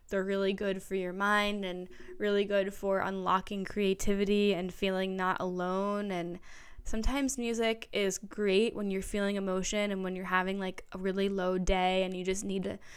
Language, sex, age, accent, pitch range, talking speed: English, female, 10-29, American, 185-205 Hz, 180 wpm